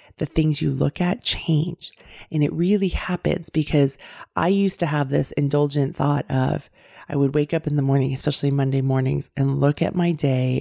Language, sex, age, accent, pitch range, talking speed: English, female, 30-49, American, 140-165 Hz, 190 wpm